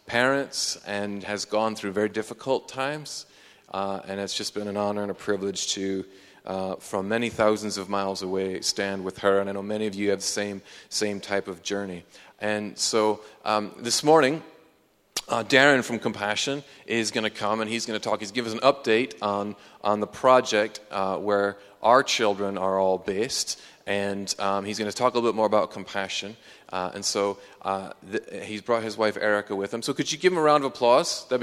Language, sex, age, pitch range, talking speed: English, male, 30-49, 100-120 Hz, 210 wpm